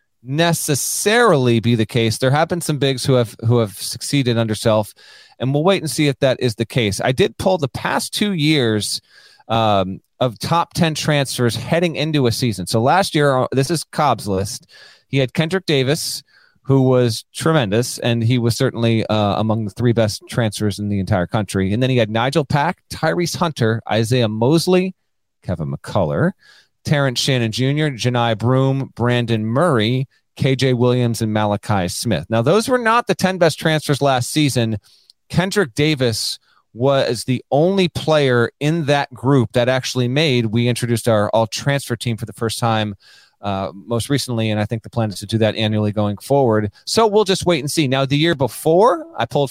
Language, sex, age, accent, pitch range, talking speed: English, male, 30-49, American, 115-150 Hz, 185 wpm